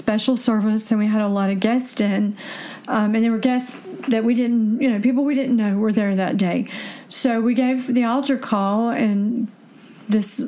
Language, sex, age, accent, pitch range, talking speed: English, female, 50-69, American, 205-240 Hz, 205 wpm